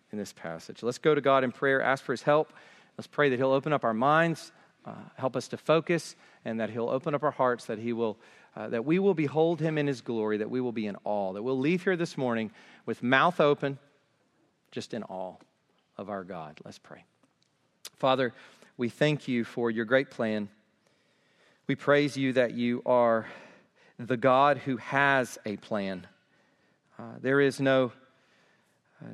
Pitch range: 115-145 Hz